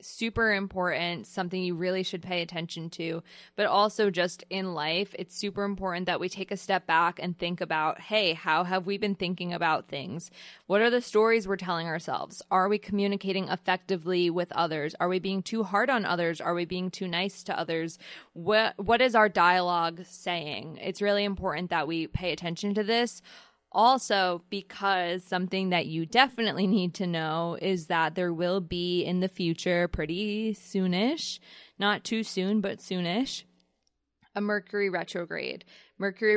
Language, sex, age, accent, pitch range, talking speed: English, female, 20-39, American, 175-200 Hz, 170 wpm